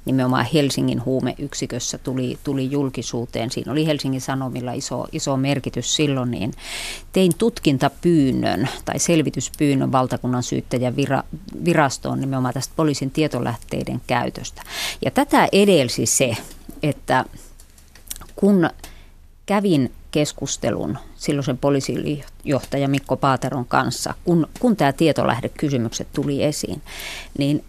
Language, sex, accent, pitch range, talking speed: Finnish, female, native, 125-165 Hz, 105 wpm